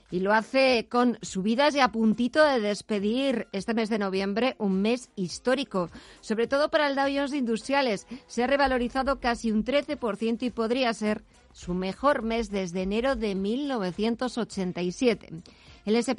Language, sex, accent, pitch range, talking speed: Spanish, female, Spanish, 220-260 Hz, 150 wpm